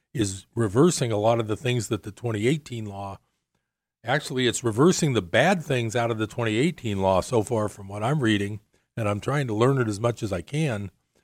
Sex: male